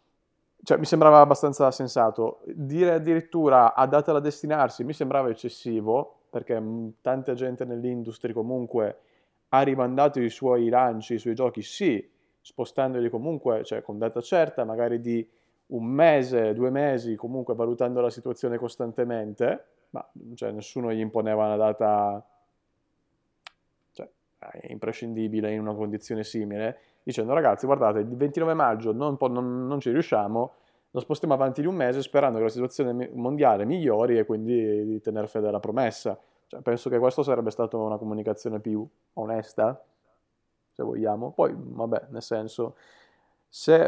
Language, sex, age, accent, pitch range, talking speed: Italian, male, 20-39, native, 110-140 Hz, 145 wpm